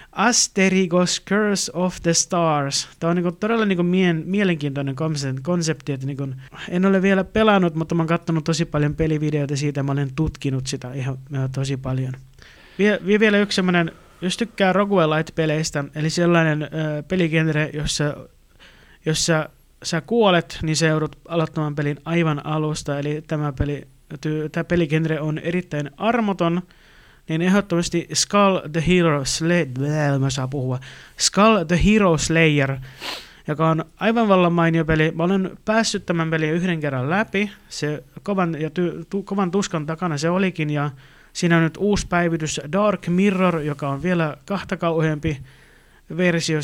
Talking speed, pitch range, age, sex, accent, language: 125 wpm, 150-180 Hz, 30-49, male, native, Finnish